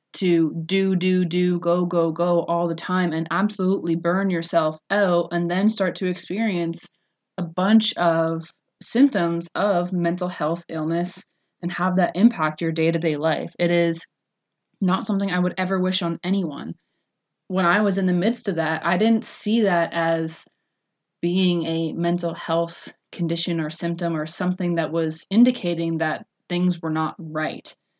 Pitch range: 170-200 Hz